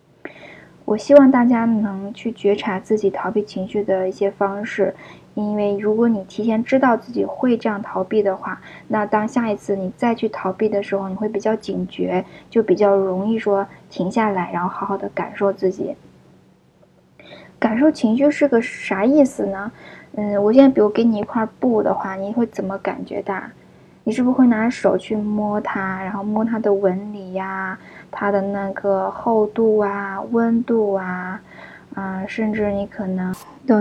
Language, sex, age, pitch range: Chinese, female, 10-29, 195-230 Hz